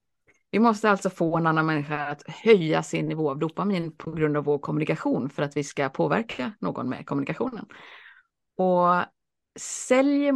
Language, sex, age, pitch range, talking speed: Swedish, female, 30-49, 155-200 Hz, 160 wpm